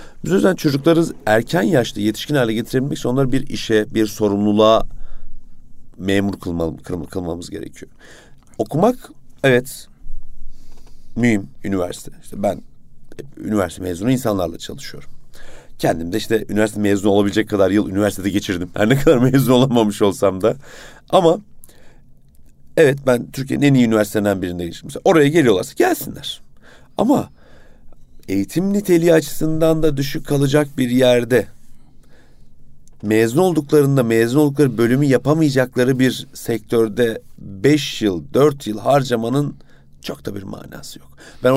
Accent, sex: native, male